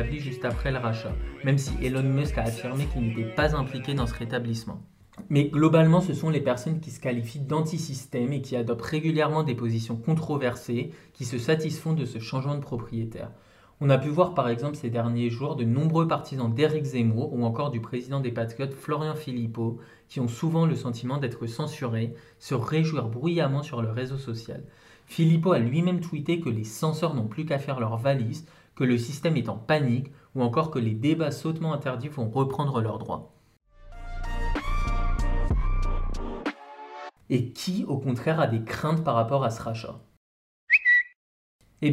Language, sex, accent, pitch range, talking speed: French, male, French, 115-150 Hz, 175 wpm